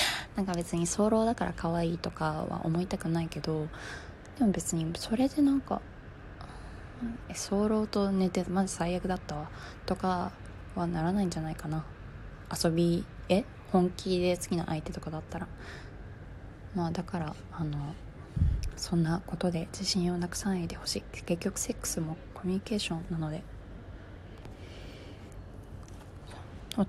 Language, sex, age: Japanese, female, 20-39